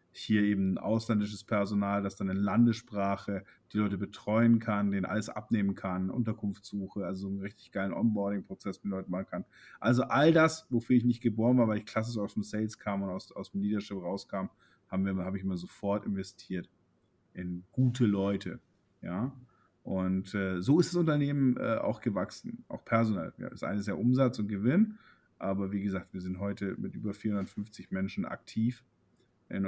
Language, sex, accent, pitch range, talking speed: German, male, German, 100-120 Hz, 180 wpm